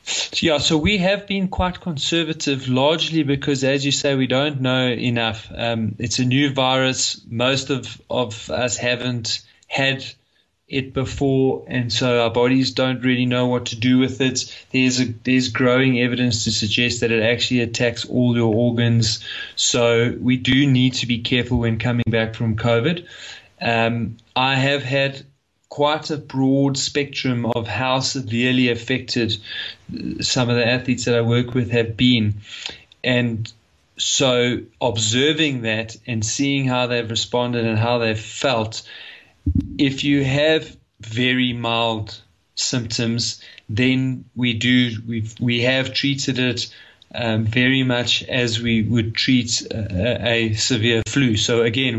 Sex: male